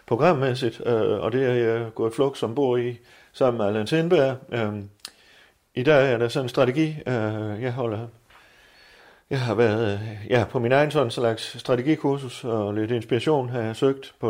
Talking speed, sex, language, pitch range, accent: 190 wpm, male, Danish, 110-135 Hz, native